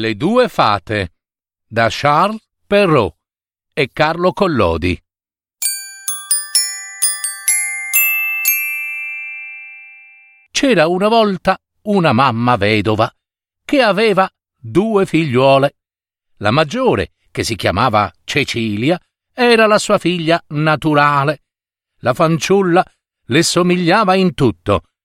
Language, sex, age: Italian, male, 50-69